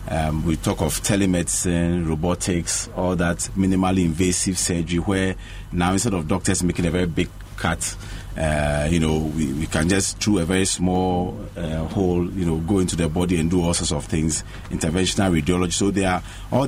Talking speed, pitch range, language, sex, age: 180 wpm, 85-100 Hz, English, male, 40-59